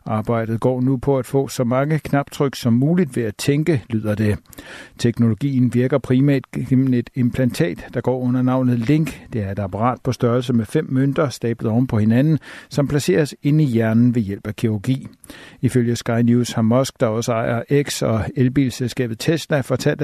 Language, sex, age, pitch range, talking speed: Danish, male, 60-79, 120-145 Hz, 185 wpm